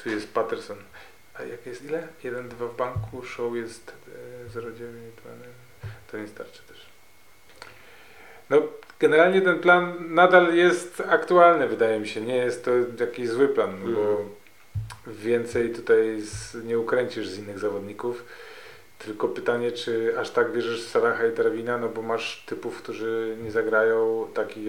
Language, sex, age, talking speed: Polish, male, 30-49, 150 wpm